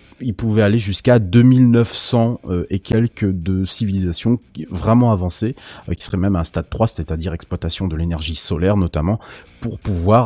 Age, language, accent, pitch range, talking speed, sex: 30-49, French, French, 90-115 Hz, 150 wpm, male